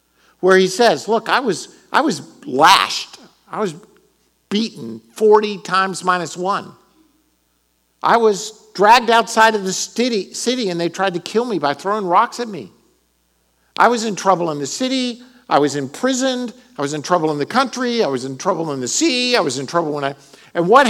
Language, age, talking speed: English, 50-69, 190 wpm